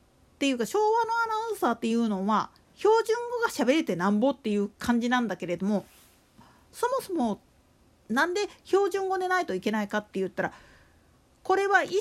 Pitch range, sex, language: 225-335 Hz, female, Japanese